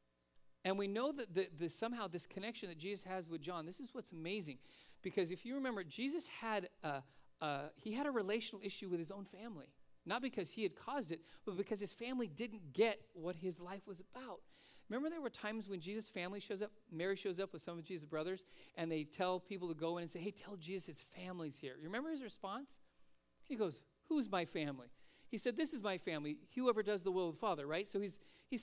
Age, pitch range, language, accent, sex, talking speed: 40-59, 150-220 Hz, English, American, male, 230 wpm